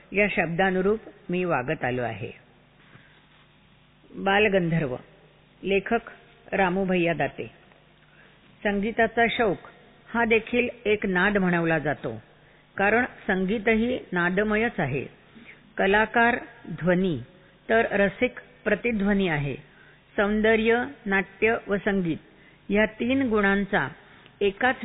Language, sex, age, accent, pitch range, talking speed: Marathi, female, 50-69, native, 180-220 Hz, 90 wpm